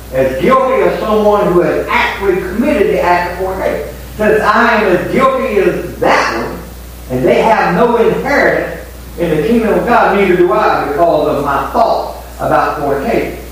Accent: American